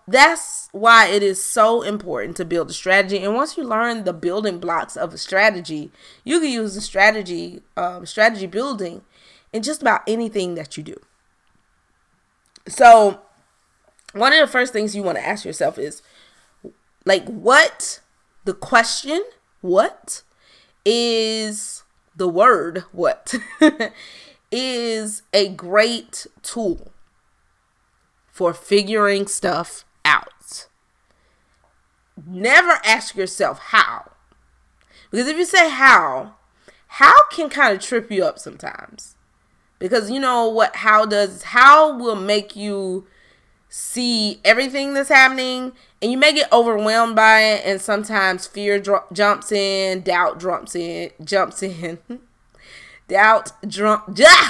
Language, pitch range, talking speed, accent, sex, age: English, 190-235 Hz, 125 wpm, American, female, 20-39